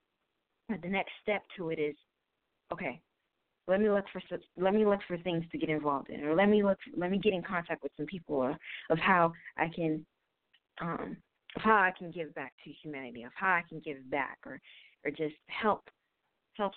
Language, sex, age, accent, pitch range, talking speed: English, female, 40-59, American, 160-200 Hz, 200 wpm